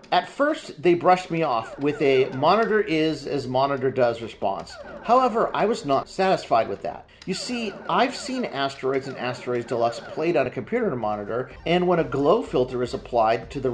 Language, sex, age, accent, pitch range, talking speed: English, male, 40-59, American, 125-180 Hz, 170 wpm